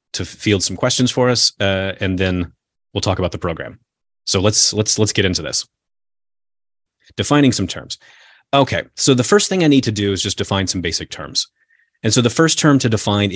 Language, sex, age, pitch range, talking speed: English, male, 30-49, 95-125 Hz, 205 wpm